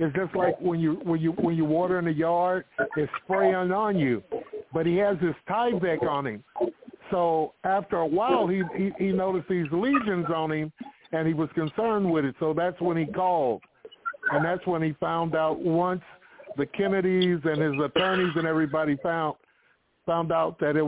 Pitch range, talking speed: 155-190 Hz, 190 wpm